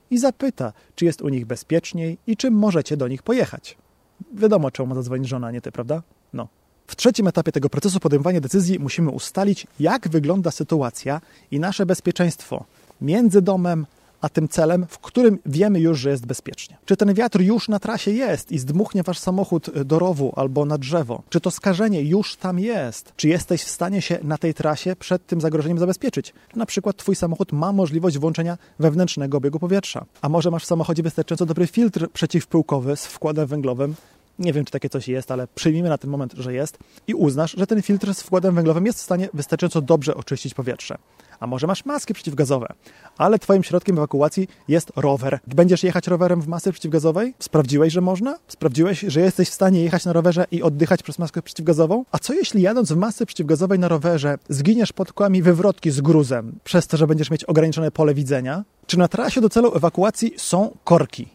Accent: native